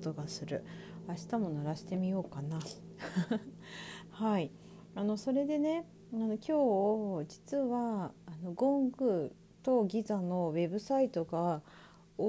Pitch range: 170-215 Hz